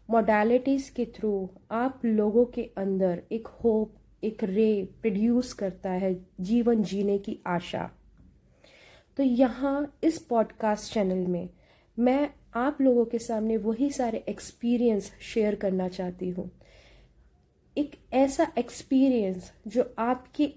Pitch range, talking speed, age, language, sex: 190-240 Hz, 120 wpm, 30-49, Hindi, female